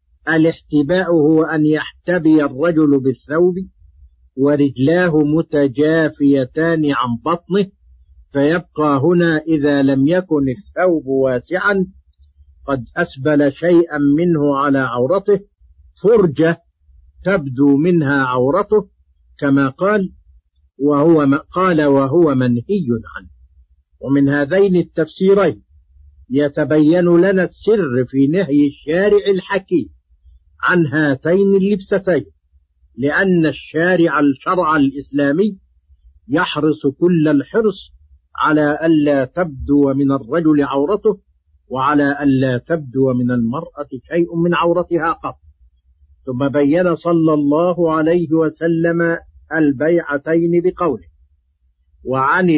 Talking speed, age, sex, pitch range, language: 90 wpm, 50-69, male, 125-170 Hz, Arabic